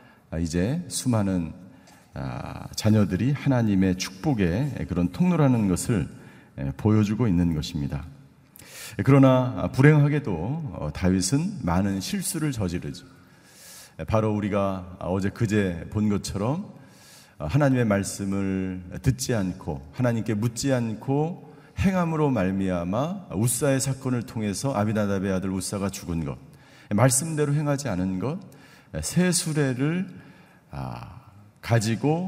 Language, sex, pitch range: Korean, male, 95-145 Hz